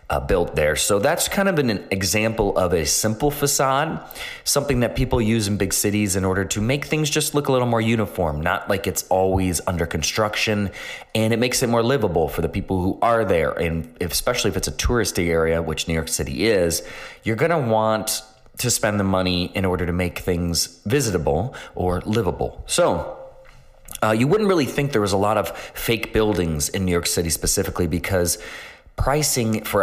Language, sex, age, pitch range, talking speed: English, male, 30-49, 85-115 Hz, 195 wpm